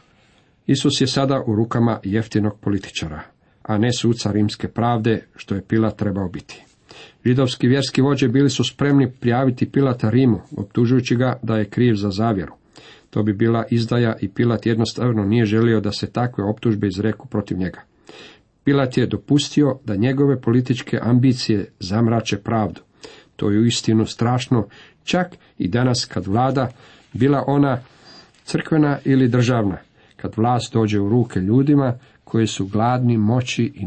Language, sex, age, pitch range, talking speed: Croatian, male, 50-69, 105-125 Hz, 150 wpm